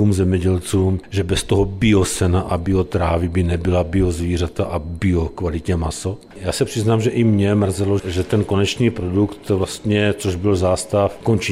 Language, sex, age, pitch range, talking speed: Czech, male, 40-59, 90-100 Hz, 165 wpm